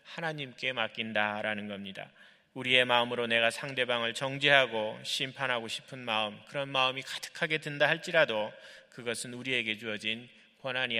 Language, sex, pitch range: Korean, male, 110-140 Hz